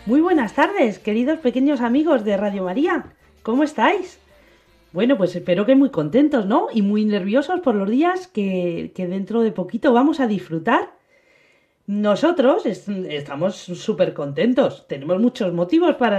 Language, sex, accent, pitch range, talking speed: Spanish, female, Spanish, 180-285 Hz, 150 wpm